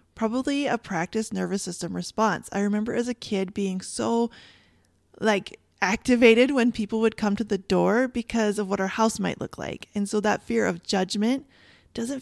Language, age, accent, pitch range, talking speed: English, 20-39, American, 195-235 Hz, 180 wpm